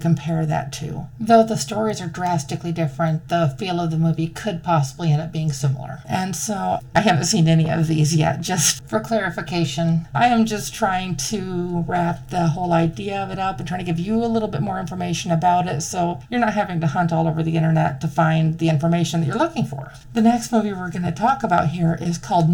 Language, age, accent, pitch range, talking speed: English, 40-59, American, 155-180 Hz, 225 wpm